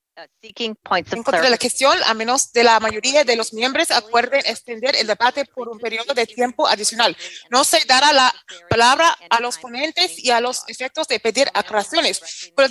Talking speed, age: 185 wpm, 30-49